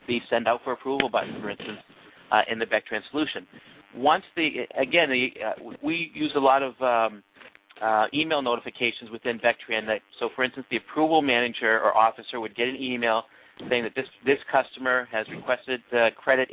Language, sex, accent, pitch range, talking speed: English, male, American, 115-130 Hz, 180 wpm